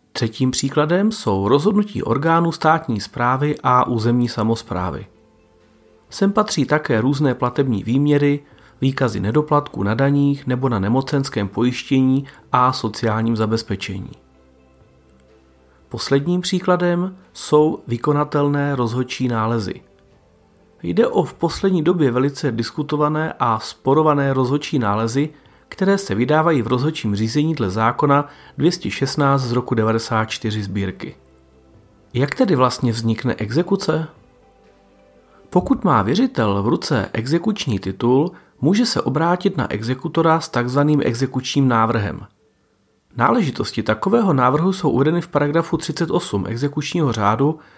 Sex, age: male, 40-59